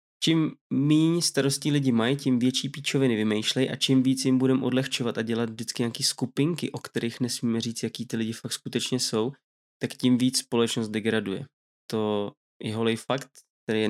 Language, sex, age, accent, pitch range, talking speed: Czech, male, 20-39, native, 115-130 Hz, 175 wpm